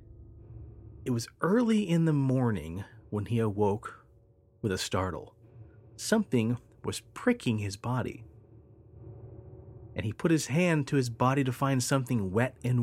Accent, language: American, English